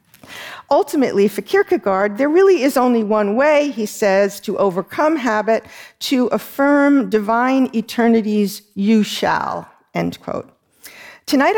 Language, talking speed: Danish, 120 wpm